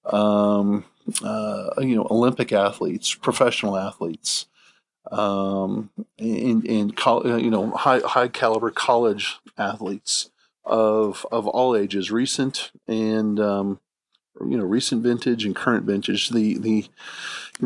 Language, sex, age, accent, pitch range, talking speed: English, male, 40-59, American, 105-130 Hz, 120 wpm